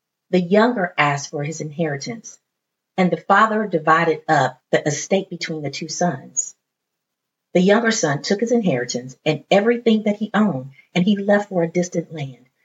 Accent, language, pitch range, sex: American, English, 160-210 Hz, female